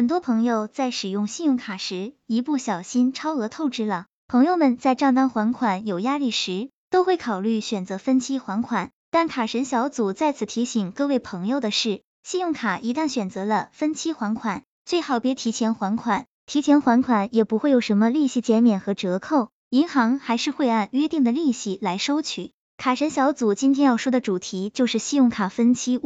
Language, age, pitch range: Chinese, 10-29, 215-275 Hz